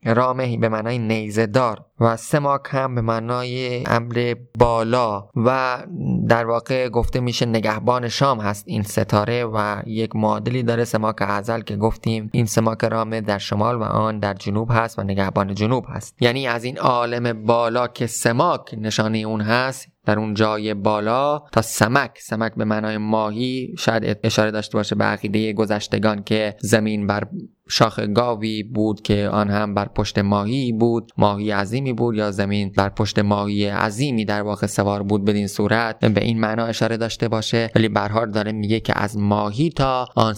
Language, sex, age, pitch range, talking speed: Persian, male, 20-39, 105-125 Hz, 170 wpm